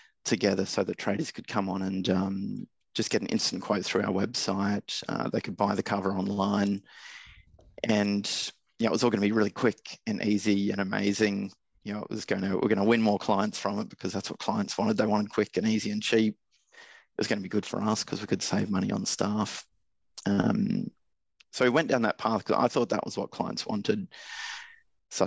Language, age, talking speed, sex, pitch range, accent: English, 30-49, 225 wpm, male, 100-110 Hz, Australian